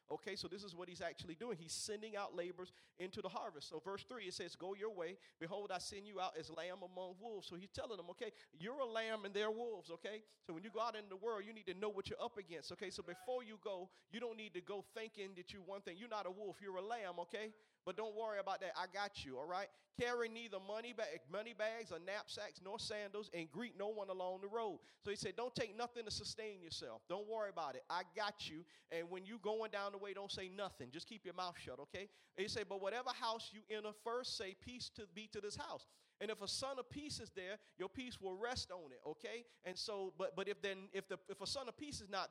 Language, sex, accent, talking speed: English, male, American, 265 wpm